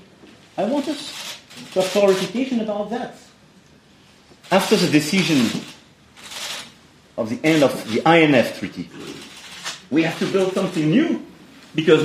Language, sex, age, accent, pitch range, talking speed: English, male, 40-59, French, 135-195 Hz, 115 wpm